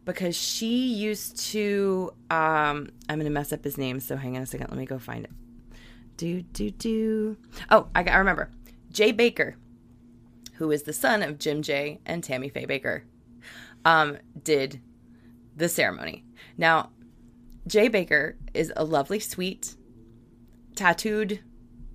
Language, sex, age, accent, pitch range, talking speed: English, female, 20-39, American, 125-195 Hz, 150 wpm